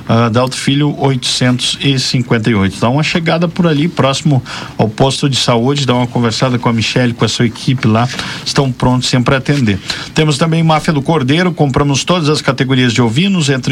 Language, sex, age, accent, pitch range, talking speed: Portuguese, male, 50-69, Brazilian, 120-145 Hz, 180 wpm